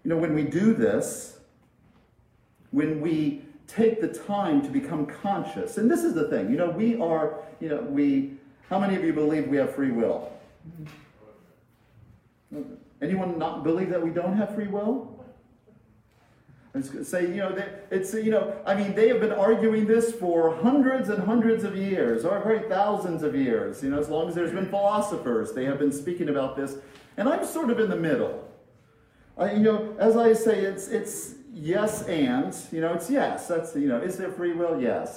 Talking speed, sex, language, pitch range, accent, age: 195 wpm, male, English, 145-220 Hz, American, 50-69